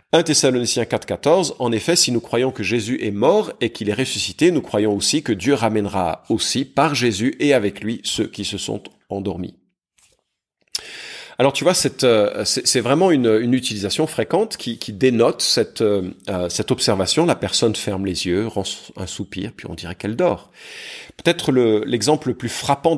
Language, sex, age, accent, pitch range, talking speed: French, male, 40-59, French, 105-145 Hz, 165 wpm